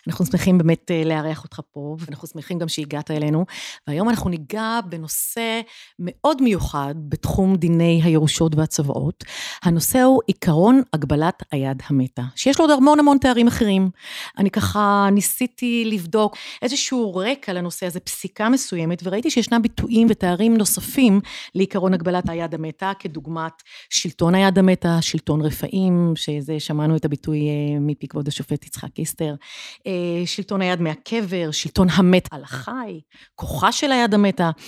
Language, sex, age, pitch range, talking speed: Hebrew, female, 30-49, 160-225 Hz, 130 wpm